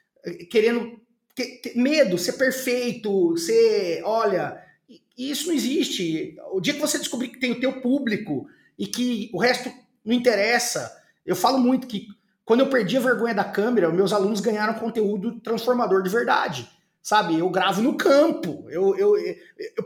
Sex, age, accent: male, 30-49, Brazilian